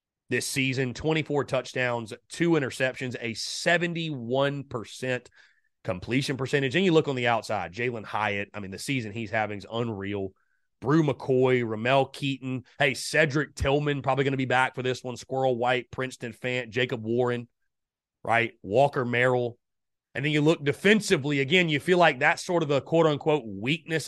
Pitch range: 120-145 Hz